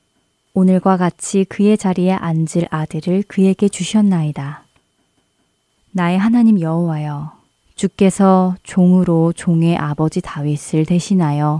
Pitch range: 160-205 Hz